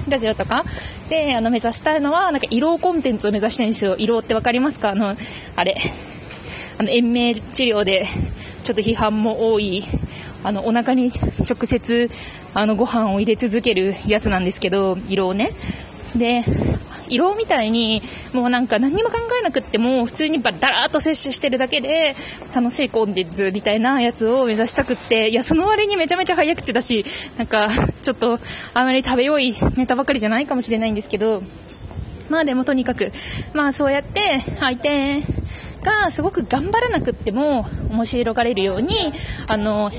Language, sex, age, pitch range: Japanese, female, 20-39, 220-285 Hz